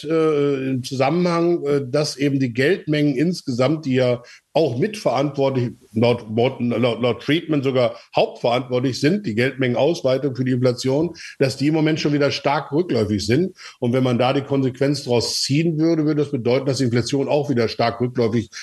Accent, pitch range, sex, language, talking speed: German, 120-150 Hz, male, German, 165 wpm